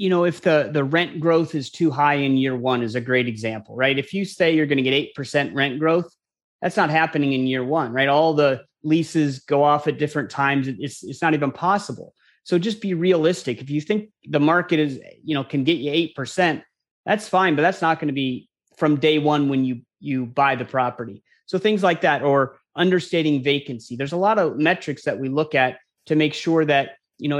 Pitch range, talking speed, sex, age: 140-165 Hz, 225 wpm, male, 30-49